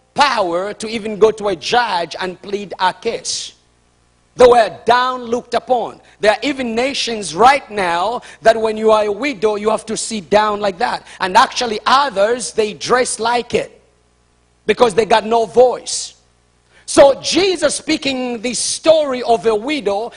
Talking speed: 165 wpm